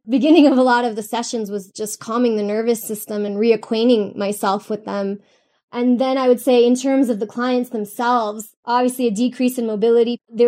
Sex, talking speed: female, 200 wpm